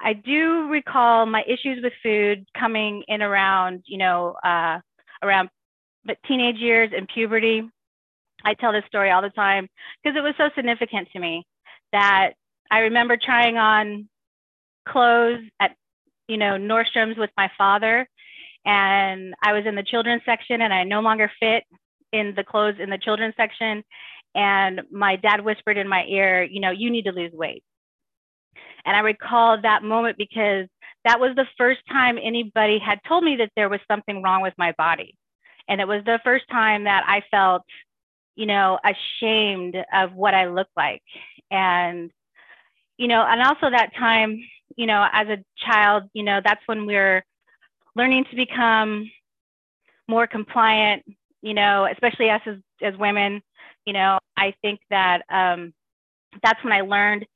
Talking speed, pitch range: 165 wpm, 195-230 Hz